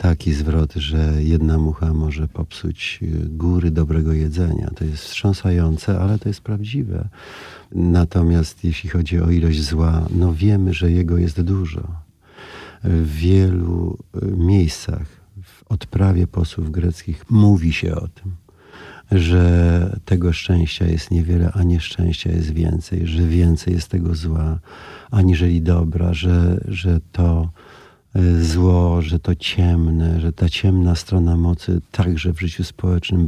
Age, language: 50-69, Polish